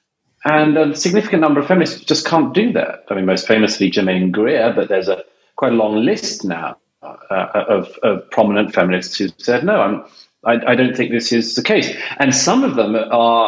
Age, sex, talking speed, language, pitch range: 40-59, male, 220 wpm, Hebrew, 115-165 Hz